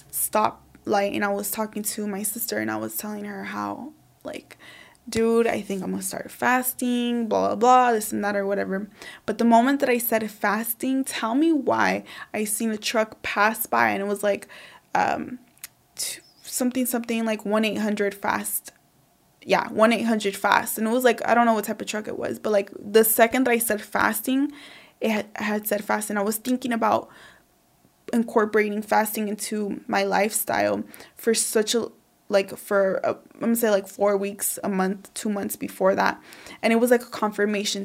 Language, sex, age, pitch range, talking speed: English, female, 20-39, 205-230 Hz, 190 wpm